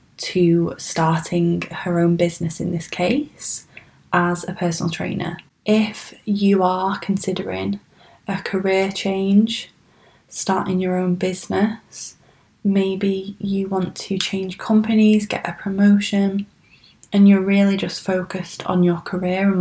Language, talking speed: English, 125 wpm